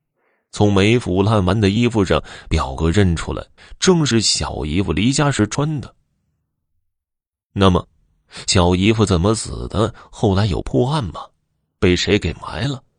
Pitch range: 85-115 Hz